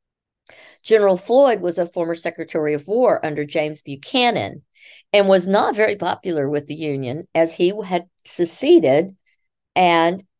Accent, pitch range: American, 155-195 Hz